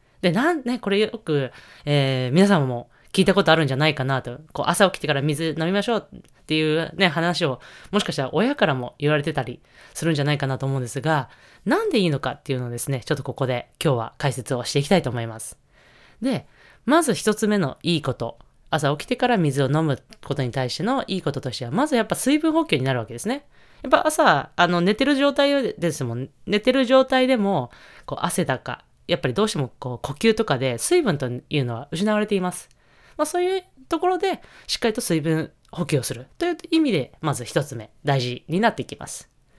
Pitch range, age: 135-220 Hz, 20-39